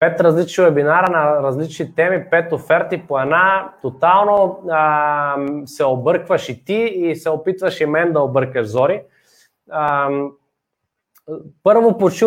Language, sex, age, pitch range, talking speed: Bulgarian, male, 20-39, 155-190 Hz, 130 wpm